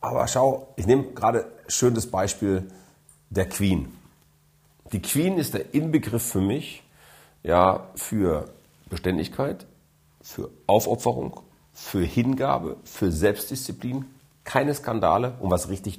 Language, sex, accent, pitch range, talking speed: German, male, German, 90-130 Hz, 115 wpm